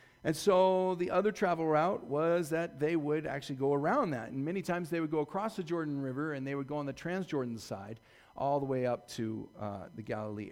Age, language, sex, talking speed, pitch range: 40-59, English, male, 230 wpm, 130-185 Hz